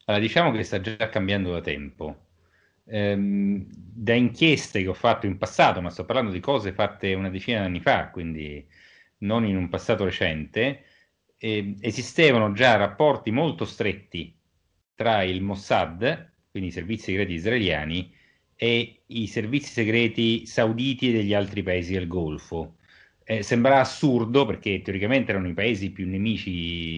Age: 40-59